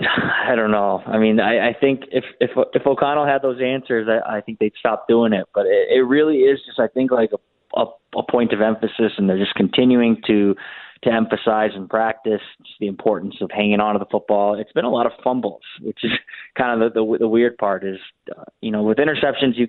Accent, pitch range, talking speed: American, 105-125 Hz, 230 wpm